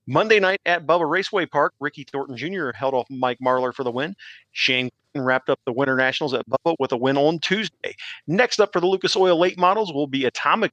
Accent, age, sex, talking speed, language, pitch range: American, 40-59, male, 225 wpm, English, 130-170 Hz